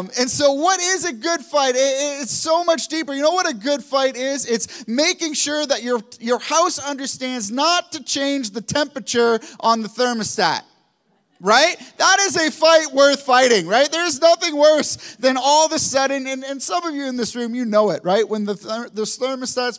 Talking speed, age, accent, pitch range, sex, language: 215 wpm, 30-49, American, 225-300 Hz, male, English